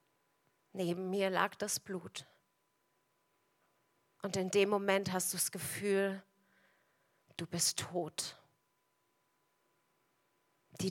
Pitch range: 180-200 Hz